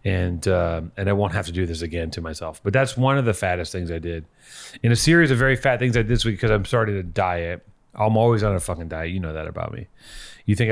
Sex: male